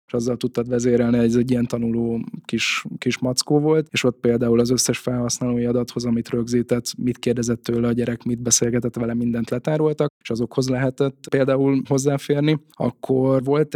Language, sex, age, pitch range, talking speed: Hungarian, male, 10-29, 115-125 Hz, 160 wpm